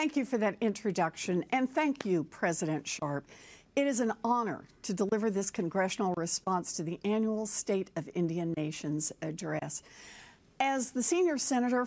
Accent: American